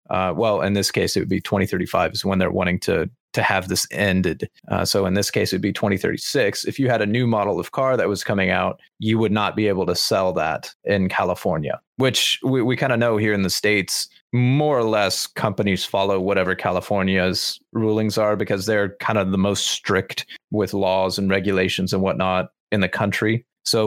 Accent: American